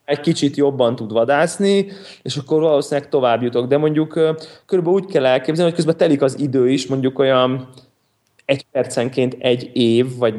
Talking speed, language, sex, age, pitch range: 170 wpm, Hungarian, male, 20-39, 120-150 Hz